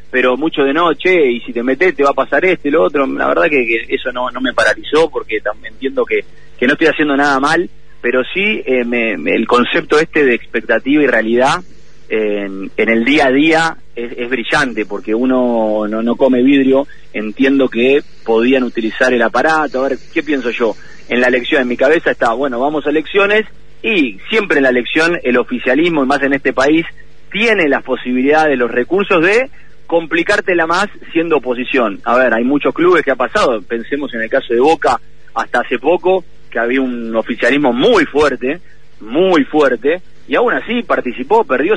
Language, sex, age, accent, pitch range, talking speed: Spanish, male, 30-49, Argentinian, 125-165 Hz, 195 wpm